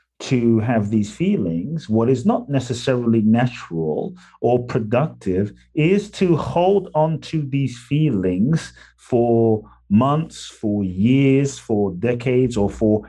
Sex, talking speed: male, 120 wpm